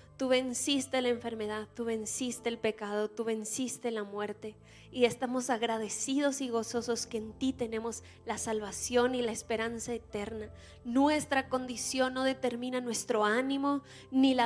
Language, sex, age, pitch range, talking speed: Spanish, female, 20-39, 230-260 Hz, 145 wpm